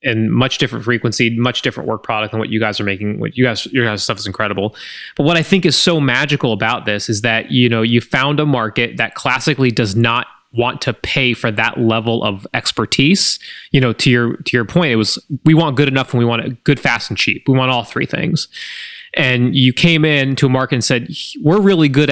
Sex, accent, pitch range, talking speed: male, American, 115-140 Hz, 235 wpm